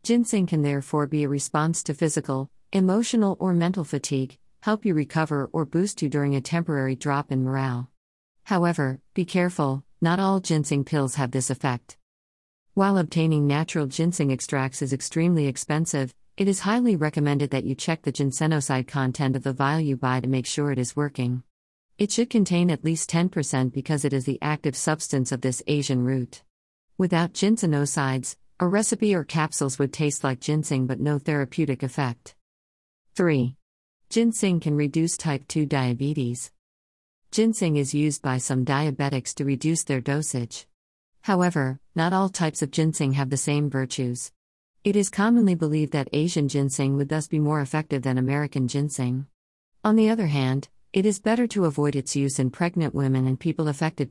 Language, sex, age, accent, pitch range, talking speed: English, female, 50-69, American, 135-165 Hz, 170 wpm